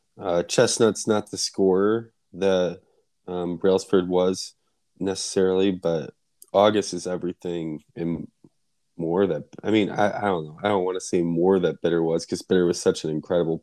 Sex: male